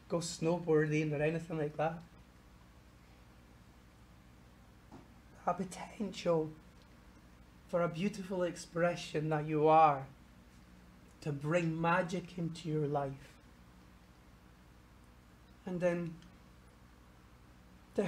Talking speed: 80 wpm